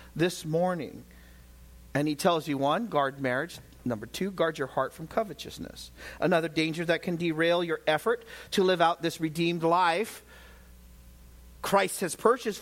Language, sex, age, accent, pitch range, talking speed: English, male, 40-59, American, 155-255 Hz, 150 wpm